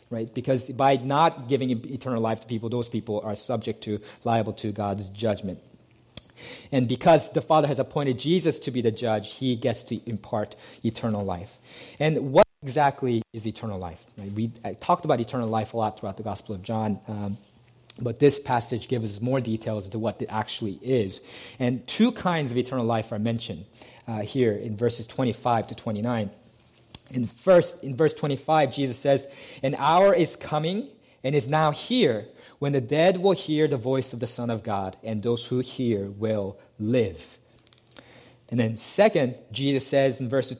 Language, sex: English, male